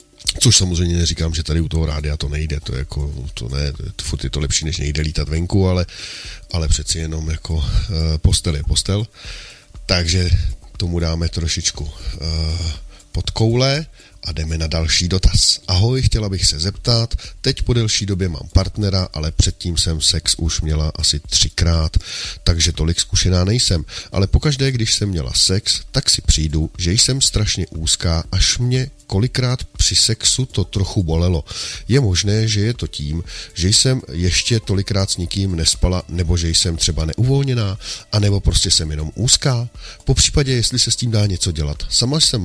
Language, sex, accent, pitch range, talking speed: Czech, male, native, 80-105 Hz, 175 wpm